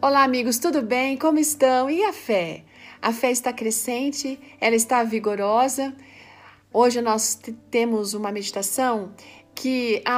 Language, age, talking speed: Portuguese, 40-59, 140 wpm